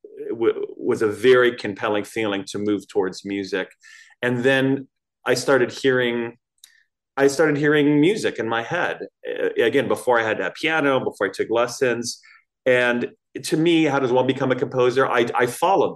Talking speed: 160 wpm